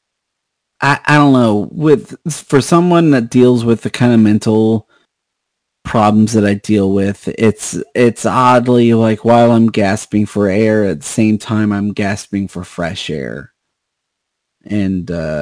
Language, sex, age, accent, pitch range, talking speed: English, male, 30-49, American, 105-130 Hz, 150 wpm